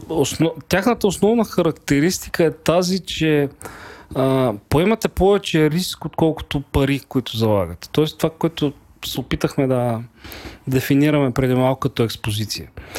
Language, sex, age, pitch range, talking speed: English, male, 40-59, 125-185 Hz, 115 wpm